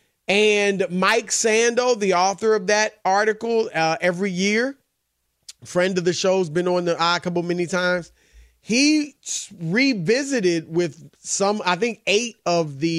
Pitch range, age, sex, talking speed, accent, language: 160-205 Hz, 30-49, male, 150 wpm, American, English